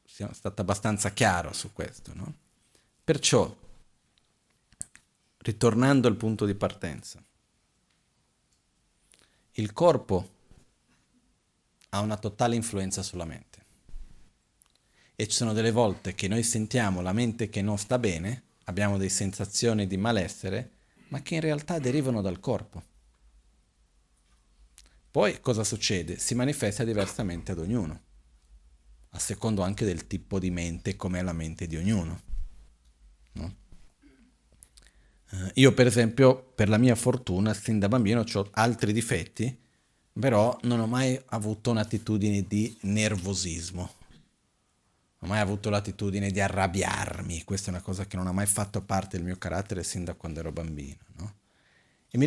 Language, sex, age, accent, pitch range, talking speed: Italian, male, 40-59, native, 90-115 Hz, 135 wpm